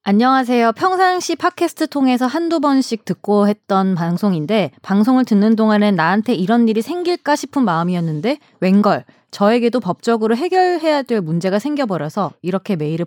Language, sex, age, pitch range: Korean, female, 20-39, 195-280 Hz